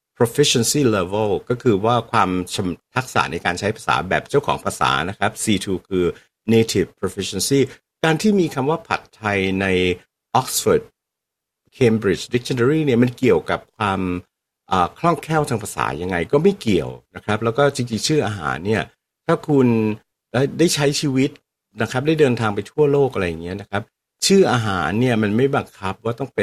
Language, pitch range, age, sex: Thai, 95-135 Hz, 60-79, male